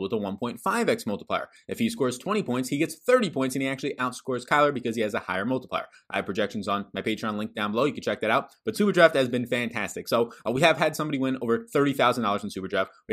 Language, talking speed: English, 250 wpm